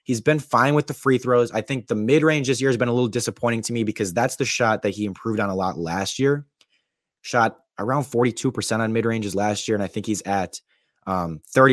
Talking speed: 250 wpm